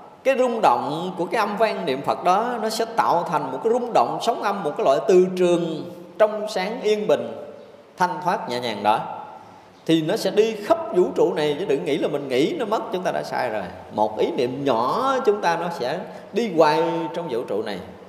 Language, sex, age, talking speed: Vietnamese, male, 20-39, 230 wpm